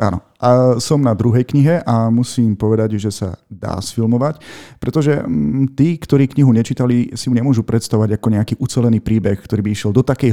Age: 40-59